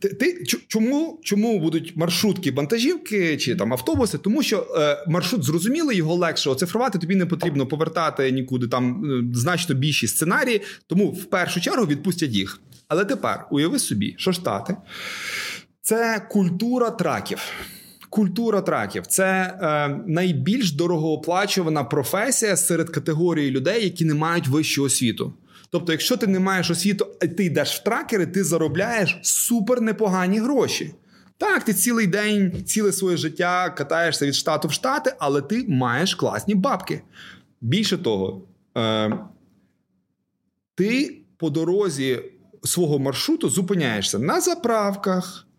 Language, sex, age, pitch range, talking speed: Ukrainian, male, 20-39, 155-205 Hz, 135 wpm